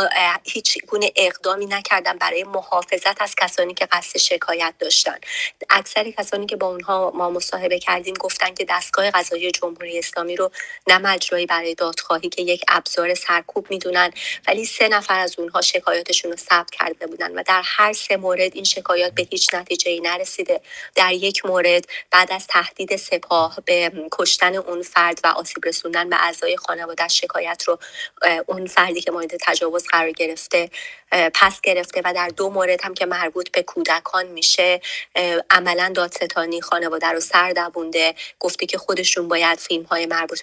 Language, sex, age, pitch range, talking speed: English, female, 30-49, 170-190 Hz, 160 wpm